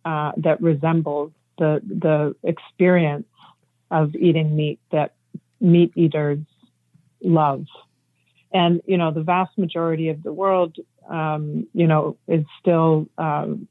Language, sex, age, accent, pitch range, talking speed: English, female, 40-59, American, 155-175 Hz, 125 wpm